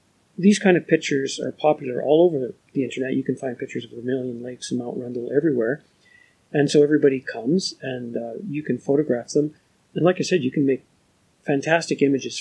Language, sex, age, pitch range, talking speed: English, male, 50-69, 125-150 Hz, 200 wpm